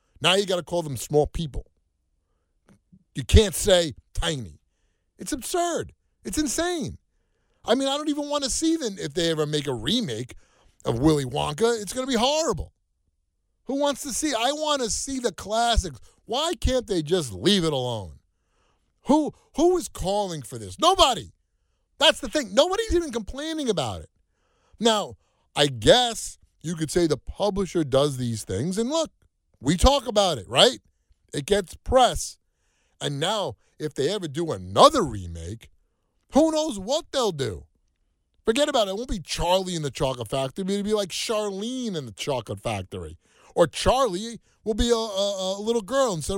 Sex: male